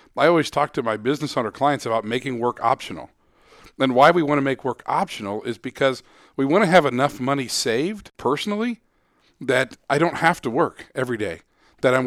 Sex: male